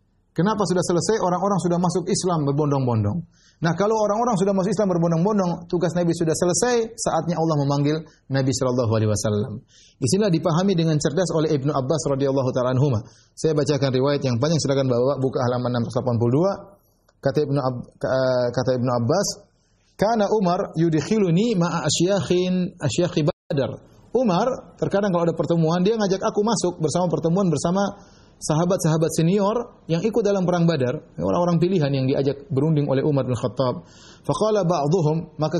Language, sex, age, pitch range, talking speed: Indonesian, male, 30-49, 140-195 Hz, 135 wpm